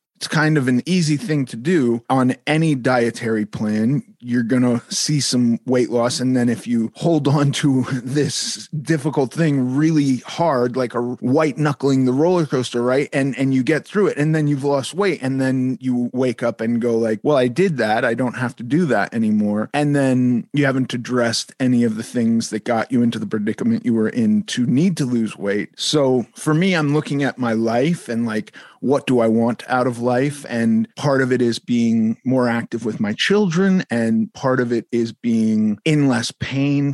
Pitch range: 120-145 Hz